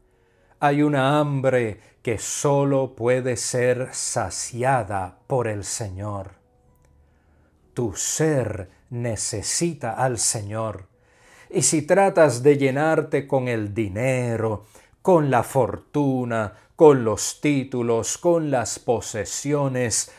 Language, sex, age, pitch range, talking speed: English, male, 40-59, 110-145 Hz, 100 wpm